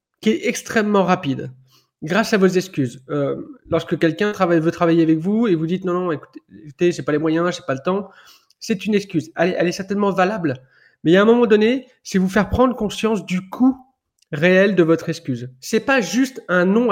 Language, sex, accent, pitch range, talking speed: French, male, French, 160-215 Hz, 215 wpm